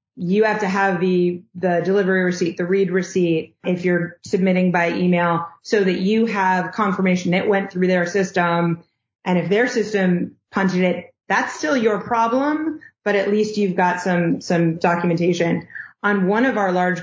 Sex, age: female, 30-49